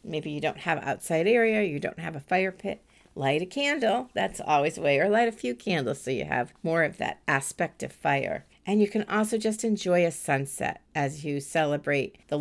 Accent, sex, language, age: American, female, English, 50-69